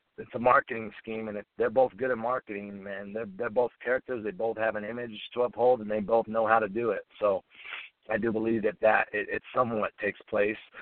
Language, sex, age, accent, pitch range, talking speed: English, male, 30-49, American, 105-120 Hz, 235 wpm